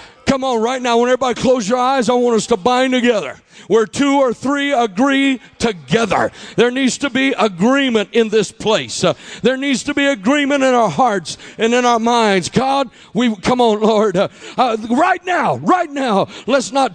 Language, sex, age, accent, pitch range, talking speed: English, male, 50-69, American, 225-280 Hz, 195 wpm